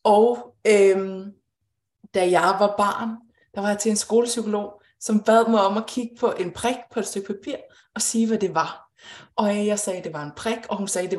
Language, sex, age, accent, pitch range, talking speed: Danish, female, 20-39, native, 195-240 Hz, 230 wpm